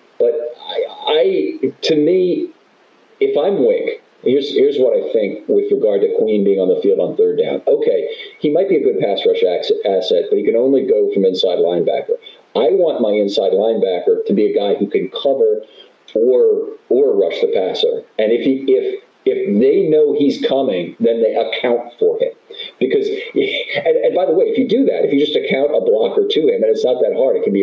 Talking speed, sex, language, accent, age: 215 wpm, male, English, American, 50-69